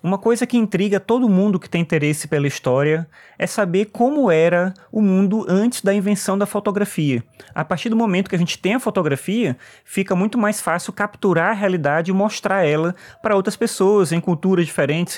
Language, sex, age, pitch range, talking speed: Portuguese, male, 20-39, 155-195 Hz, 190 wpm